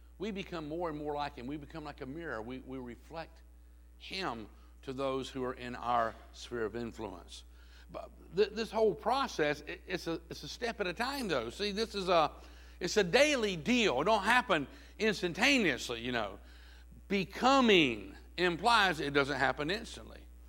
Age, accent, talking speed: 60-79, American, 165 wpm